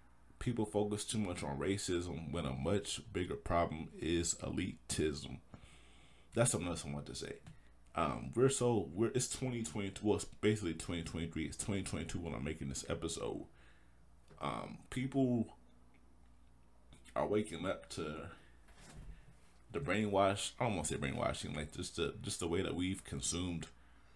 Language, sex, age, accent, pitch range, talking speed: English, male, 30-49, American, 65-90 Hz, 145 wpm